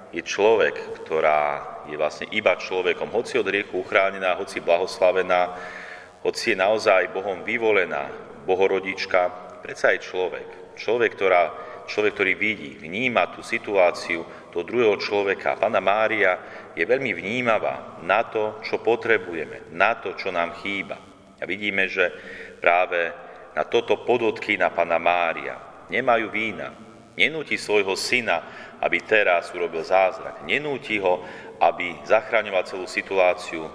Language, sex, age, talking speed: Slovak, male, 40-59, 130 wpm